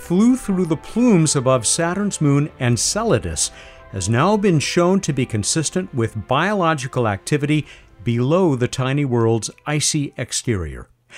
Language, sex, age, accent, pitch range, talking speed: English, male, 50-69, American, 115-165 Hz, 130 wpm